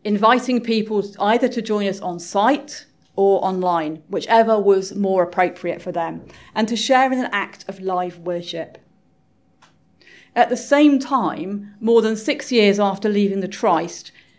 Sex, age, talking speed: female, 40-59, 155 wpm